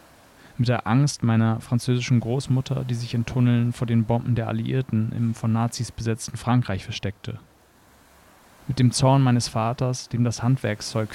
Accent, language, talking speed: German, German, 155 wpm